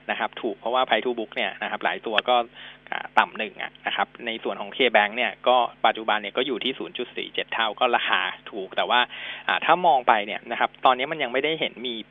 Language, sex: Thai, male